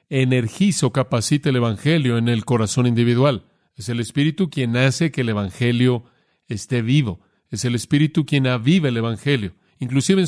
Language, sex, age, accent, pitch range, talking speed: Spanish, male, 40-59, Mexican, 120-145 Hz, 160 wpm